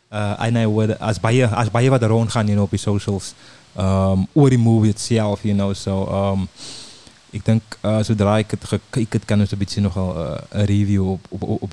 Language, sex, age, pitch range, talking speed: English, male, 20-39, 100-115 Hz, 180 wpm